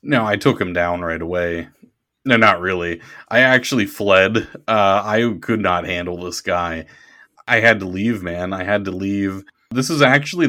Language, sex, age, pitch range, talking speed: English, male, 30-49, 90-110 Hz, 185 wpm